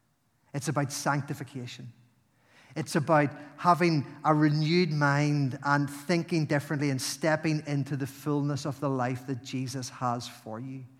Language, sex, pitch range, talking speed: English, male, 130-165 Hz, 135 wpm